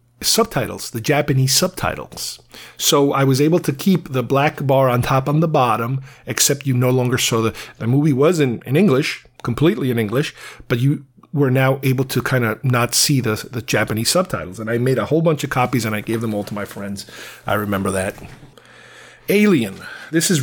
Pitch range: 125-160 Hz